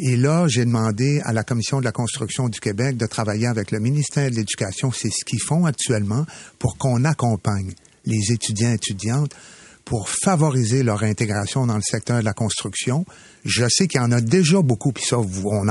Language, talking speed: French, 200 wpm